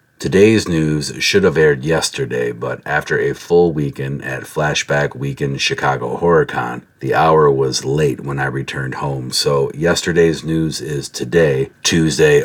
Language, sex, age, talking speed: English, male, 40-59, 150 wpm